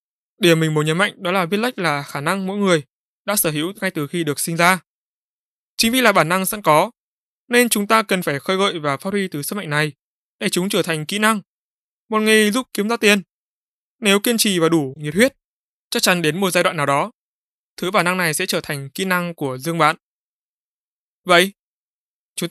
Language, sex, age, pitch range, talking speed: Vietnamese, male, 20-39, 155-200 Hz, 225 wpm